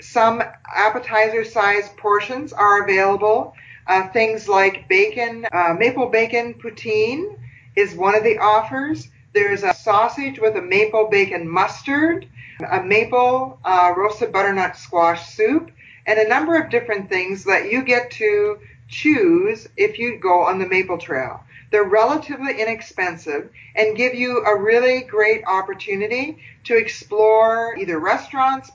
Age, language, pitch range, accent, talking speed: 50-69, English, 185-245 Hz, American, 135 wpm